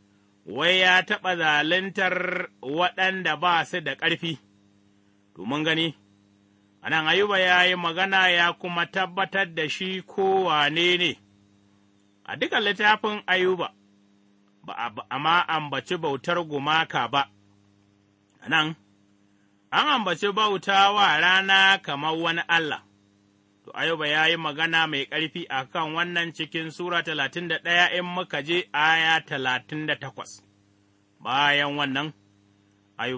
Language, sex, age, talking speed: English, male, 30-49, 100 wpm